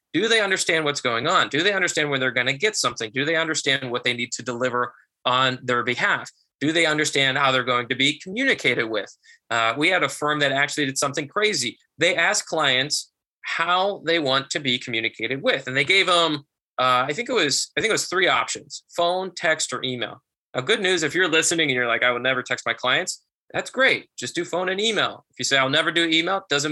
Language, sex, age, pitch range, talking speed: English, male, 20-39, 125-170 Hz, 235 wpm